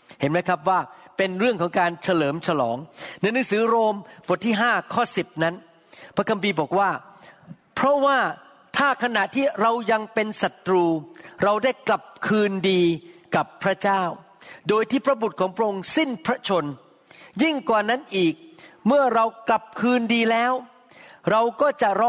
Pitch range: 185-230 Hz